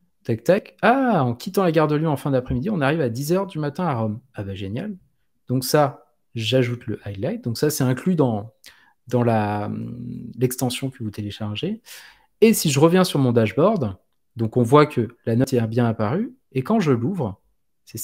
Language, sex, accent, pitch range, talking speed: French, male, French, 120-170 Hz, 195 wpm